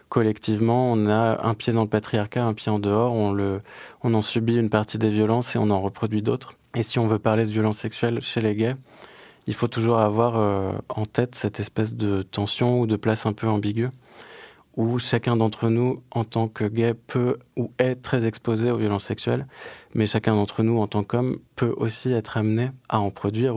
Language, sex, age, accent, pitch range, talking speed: French, male, 20-39, French, 105-120 Hz, 215 wpm